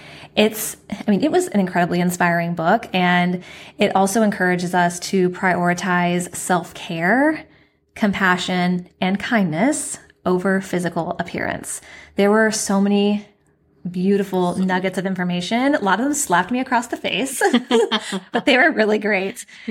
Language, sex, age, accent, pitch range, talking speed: English, female, 20-39, American, 180-210 Hz, 140 wpm